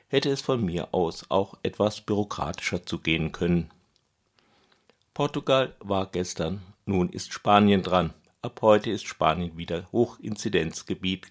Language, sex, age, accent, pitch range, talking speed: German, male, 60-79, German, 90-115 Hz, 125 wpm